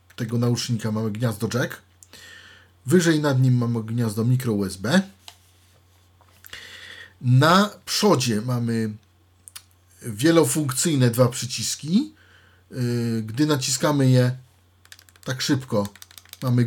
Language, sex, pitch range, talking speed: Polish, male, 105-140 Hz, 85 wpm